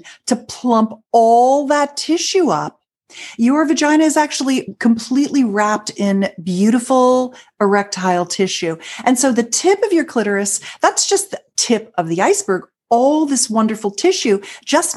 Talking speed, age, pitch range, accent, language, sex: 140 wpm, 40-59, 170-230 Hz, American, English, female